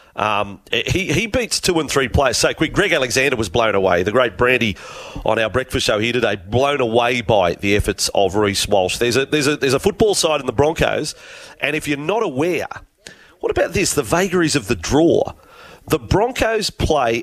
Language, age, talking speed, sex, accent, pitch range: English, 40-59, 205 wpm, male, Australian, 125-210 Hz